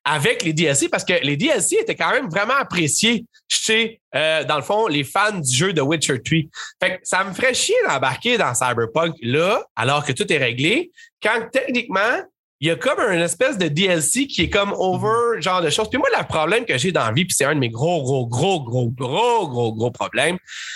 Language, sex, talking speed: French, male, 230 wpm